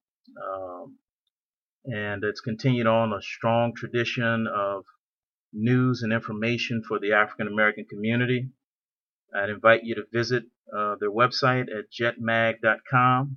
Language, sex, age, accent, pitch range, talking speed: English, male, 40-59, American, 105-125 Hz, 120 wpm